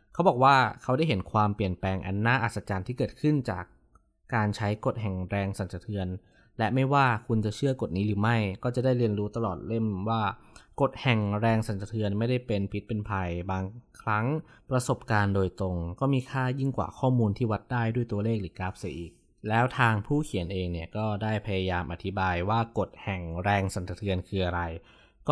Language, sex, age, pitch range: Thai, male, 20-39, 95-120 Hz